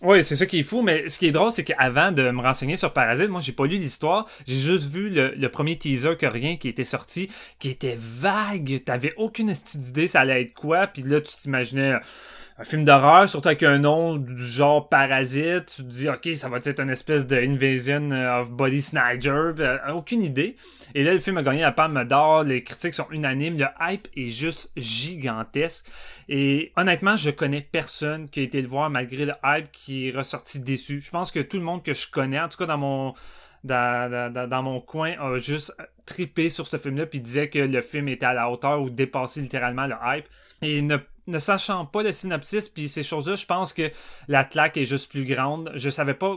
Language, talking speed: French, 225 wpm